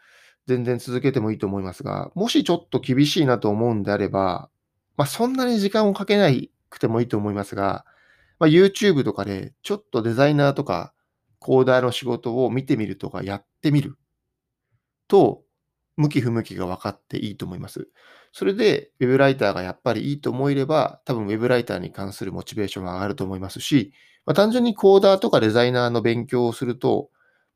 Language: Japanese